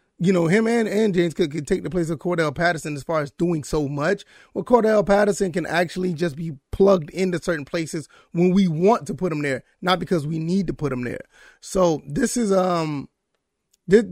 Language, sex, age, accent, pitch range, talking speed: English, male, 30-49, American, 155-185 Hz, 215 wpm